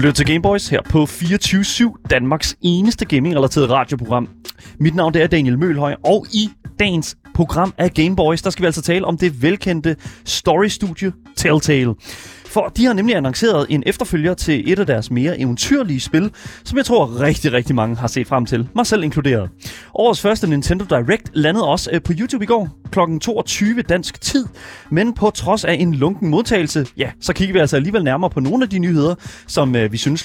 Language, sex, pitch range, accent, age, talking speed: Danish, male, 140-190 Hz, native, 30-49, 190 wpm